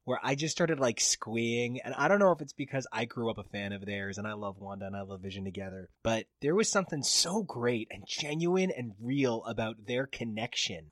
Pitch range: 120-165 Hz